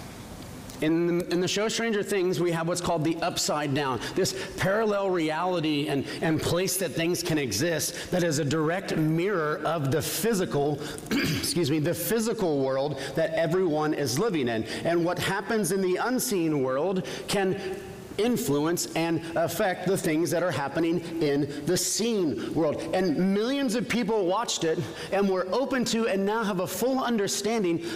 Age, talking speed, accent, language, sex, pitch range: 30-49, 165 wpm, American, English, male, 155-195 Hz